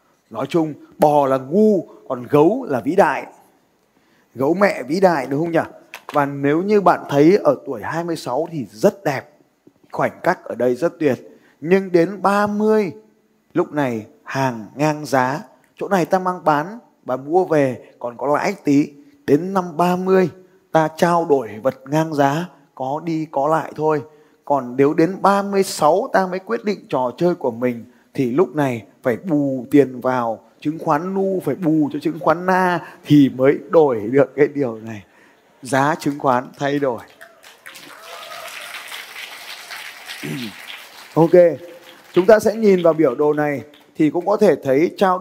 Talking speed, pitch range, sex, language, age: 165 wpm, 140-175 Hz, male, Vietnamese, 20-39